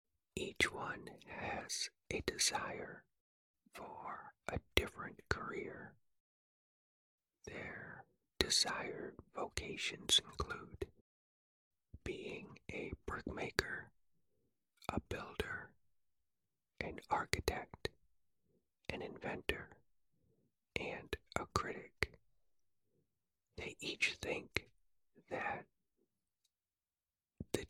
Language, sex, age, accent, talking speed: English, male, 40-59, American, 65 wpm